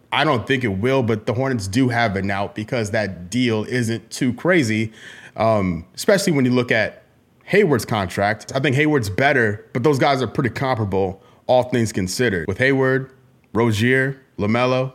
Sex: male